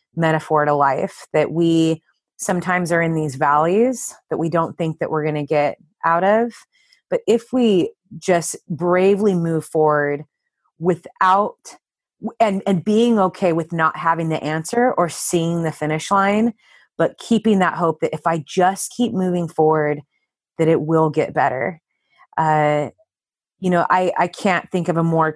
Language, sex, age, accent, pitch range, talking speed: English, female, 30-49, American, 155-180 Hz, 165 wpm